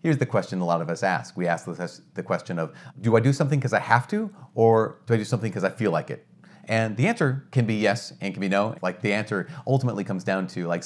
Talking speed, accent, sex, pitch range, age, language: 270 wpm, American, male, 105-140 Hz, 30-49, English